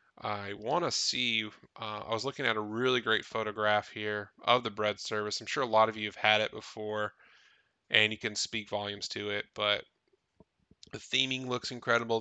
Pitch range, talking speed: 105-125 Hz, 190 wpm